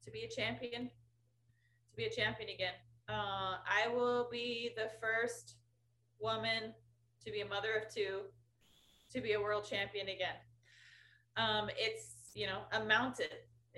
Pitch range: 165-215 Hz